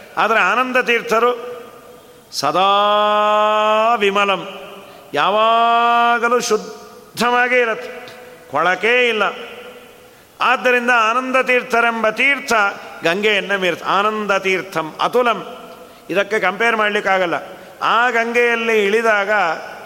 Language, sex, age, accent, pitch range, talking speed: Kannada, male, 40-59, native, 165-235 Hz, 75 wpm